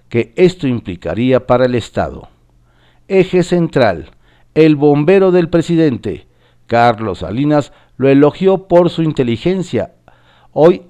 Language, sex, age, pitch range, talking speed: Spanish, male, 50-69, 100-150 Hz, 110 wpm